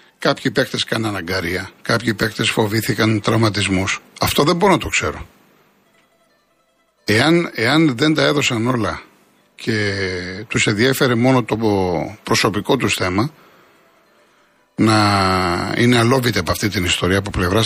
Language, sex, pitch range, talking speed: Greek, male, 100-145 Hz, 125 wpm